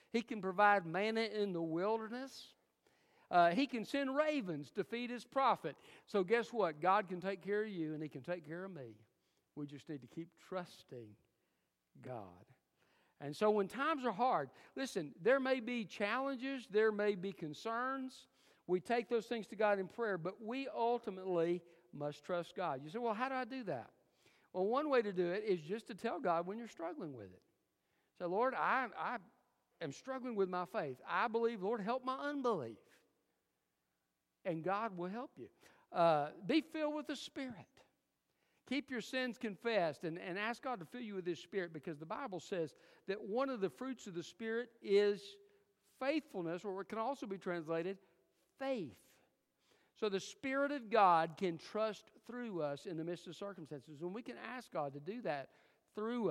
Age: 60-79